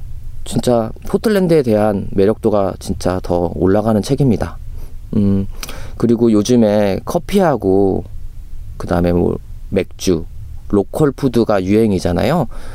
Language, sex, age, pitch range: Korean, male, 30-49, 100-125 Hz